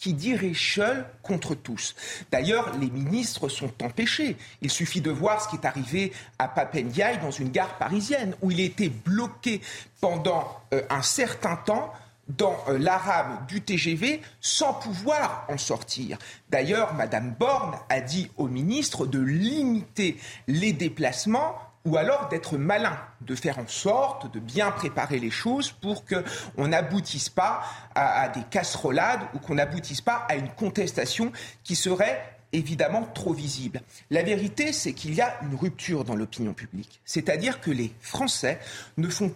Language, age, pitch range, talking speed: French, 40-59, 135-205 Hz, 155 wpm